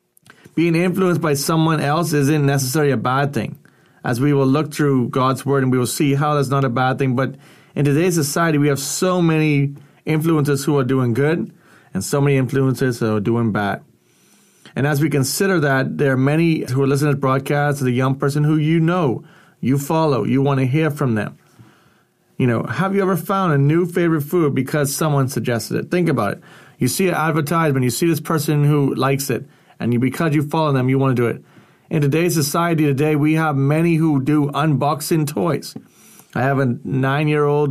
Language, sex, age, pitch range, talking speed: English, male, 30-49, 135-160 Hz, 205 wpm